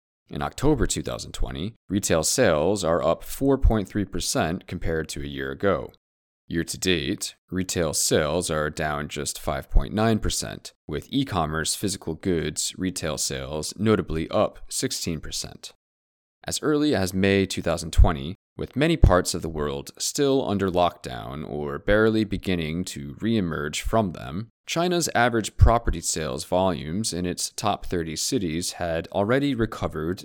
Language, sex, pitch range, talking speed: English, male, 75-100 Hz, 125 wpm